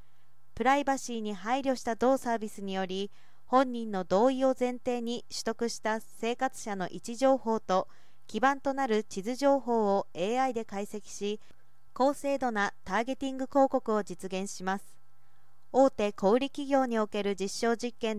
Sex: female